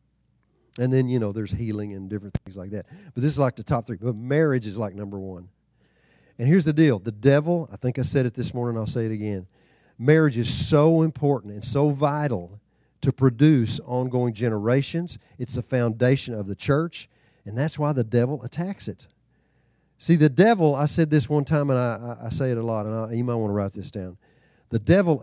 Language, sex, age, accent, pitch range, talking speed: English, male, 40-59, American, 115-155 Hz, 215 wpm